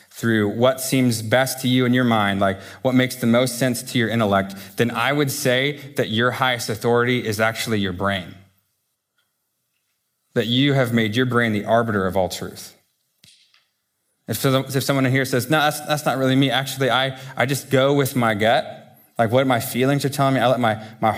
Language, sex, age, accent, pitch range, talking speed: English, male, 20-39, American, 105-135 Hz, 200 wpm